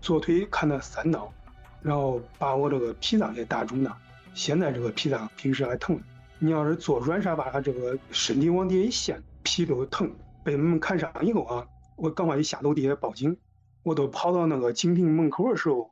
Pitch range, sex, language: 135-165 Hz, male, Chinese